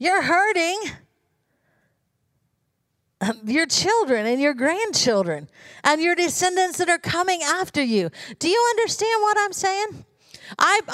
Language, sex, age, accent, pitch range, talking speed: English, female, 50-69, American, 275-335 Hz, 120 wpm